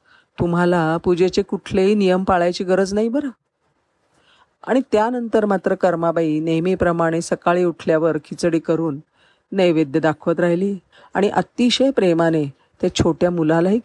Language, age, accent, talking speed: Marathi, 50-69, native, 115 wpm